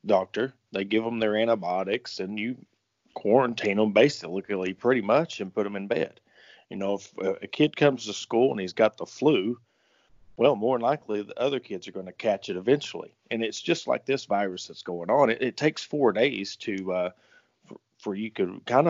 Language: English